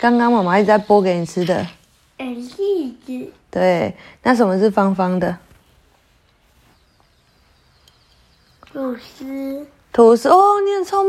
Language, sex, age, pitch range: Chinese, female, 20-39, 225-330 Hz